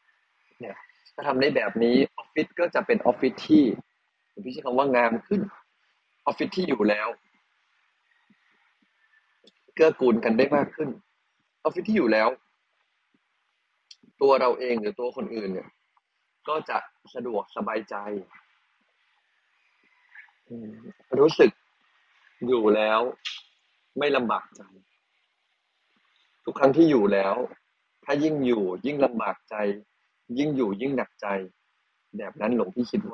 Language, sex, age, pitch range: Thai, male, 30-49, 105-135 Hz